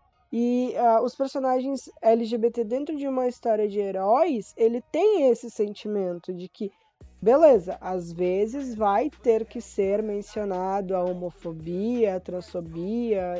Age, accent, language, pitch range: 20-39, Brazilian, Portuguese, 195-240 Hz